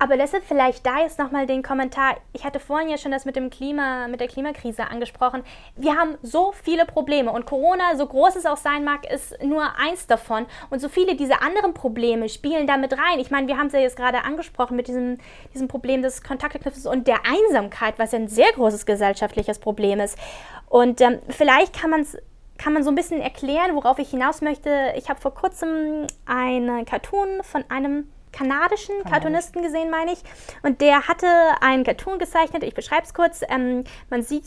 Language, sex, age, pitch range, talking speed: German, female, 10-29, 235-300 Hz, 200 wpm